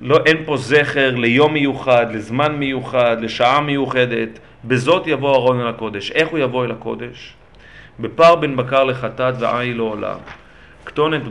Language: Hebrew